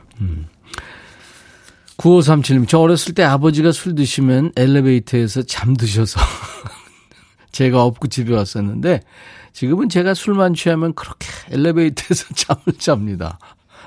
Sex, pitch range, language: male, 110-155 Hz, Korean